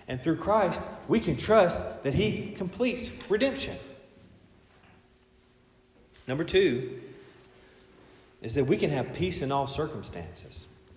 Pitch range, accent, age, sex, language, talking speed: 95-140 Hz, American, 40-59, male, English, 115 wpm